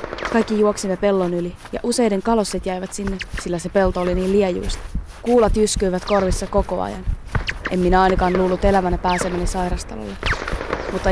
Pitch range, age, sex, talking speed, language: 180-205 Hz, 20-39, female, 150 wpm, Finnish